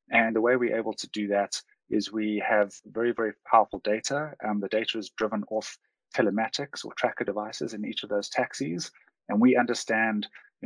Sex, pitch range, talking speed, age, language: male, 105-115 Hz, 190 wpm, 30-49, English